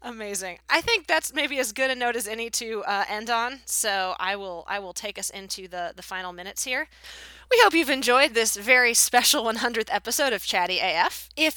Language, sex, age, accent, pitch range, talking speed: English, female, 20-39, American, 180-265 Hz, 215 wpm